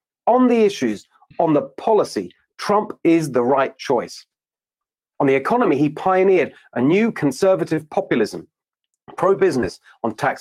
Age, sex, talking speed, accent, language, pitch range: 40-59, male, 135 wpm, British, English, 140-205 Hz